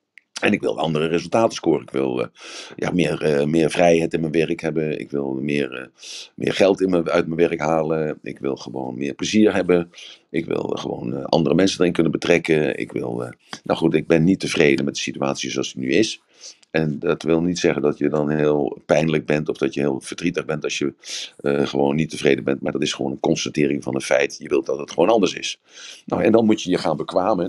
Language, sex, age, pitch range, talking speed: Dutch, male, 50-69, 70-85 Hz, 240 wpm